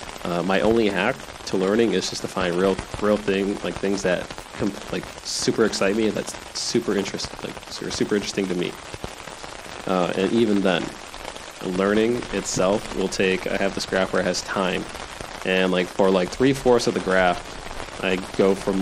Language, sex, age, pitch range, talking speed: English, male, 20-39, 90-105 Hz, 180 wpm